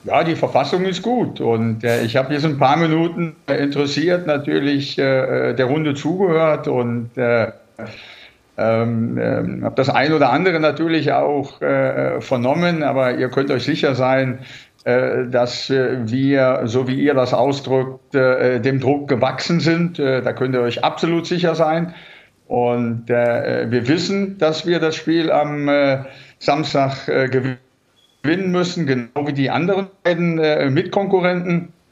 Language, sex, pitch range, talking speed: German, male, 125-155 Hz, 145 wpm